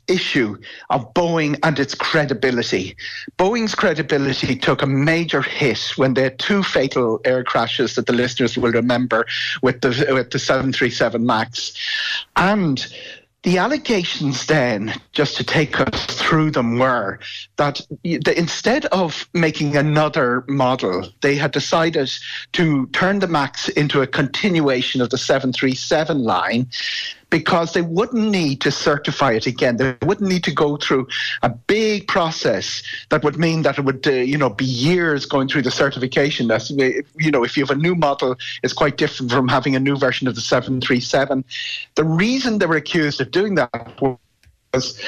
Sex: male